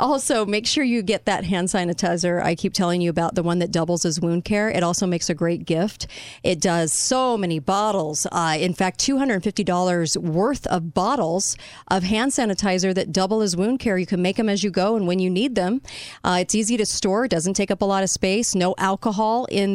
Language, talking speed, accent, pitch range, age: English, 220 wpm, American, 175-205 Hz, 40-59